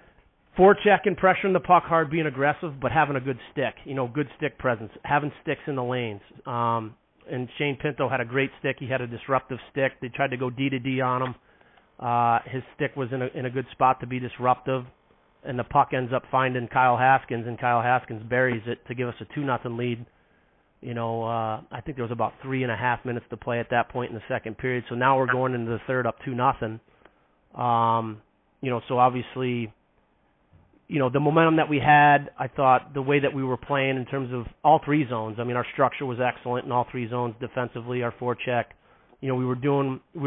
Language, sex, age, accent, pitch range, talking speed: English, male, 30-49, American, 120-140 Hz, 230 wpm